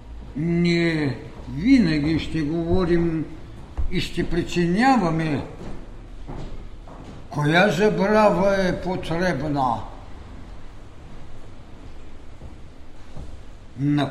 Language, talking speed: Bulgarian, 50 wpm